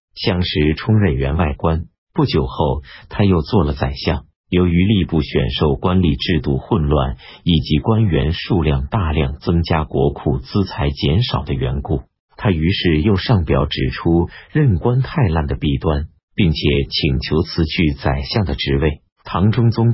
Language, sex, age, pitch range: Chinese, male, 50-69, 75-100 Hz